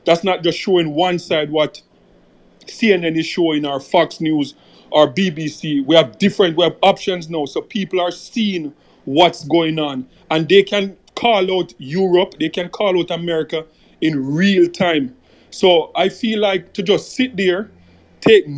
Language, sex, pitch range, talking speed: English, male, 160-215 Hz, 170 wpm